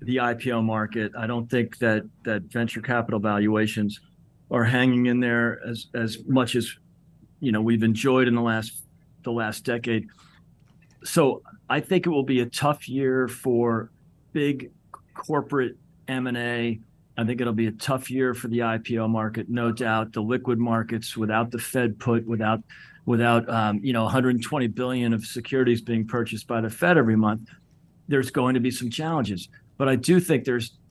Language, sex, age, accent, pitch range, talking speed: English, male, 40-59, American, 115-130 Hz, 175 wpm